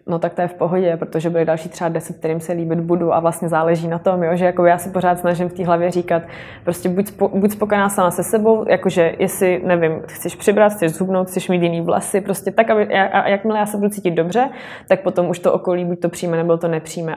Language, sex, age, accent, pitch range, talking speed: Czech, female, 20-39, native, 170-185 Hz, 250 wpm